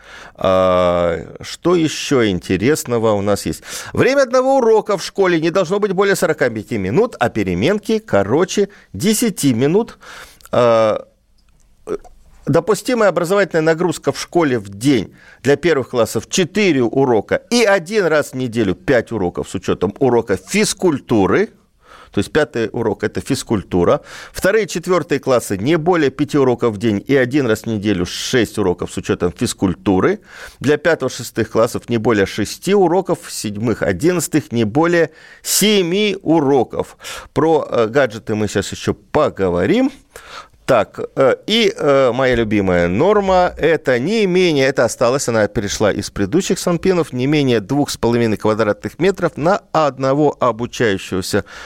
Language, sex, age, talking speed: Russian, male, 50-69, 135 wpm